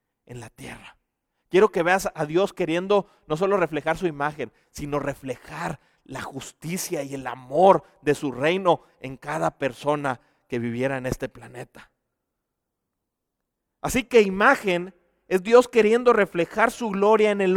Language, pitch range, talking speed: Spanish, 190-275 Hz, 145 wpm